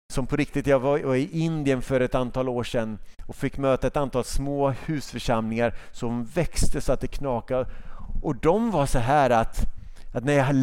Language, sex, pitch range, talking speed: Swedish, male, 115-170 Hz, 200 wpm